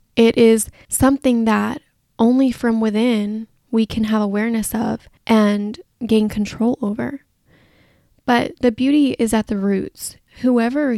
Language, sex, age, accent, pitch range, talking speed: English, female, 10-29, American, 210-235 Hz, 130 wpm